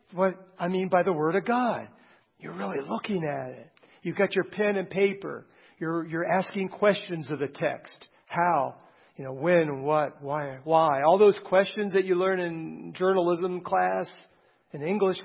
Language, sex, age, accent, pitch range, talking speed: English, male, 50-69, American, 155-200 Hz, 175 wpm